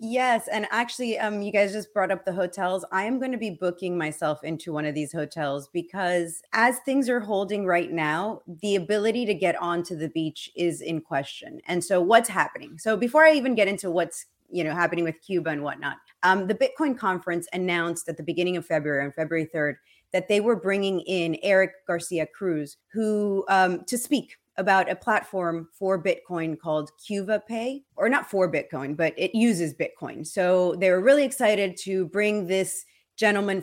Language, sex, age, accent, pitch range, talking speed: English, female, 30-49, American, 170-210 Hz, 190 wpm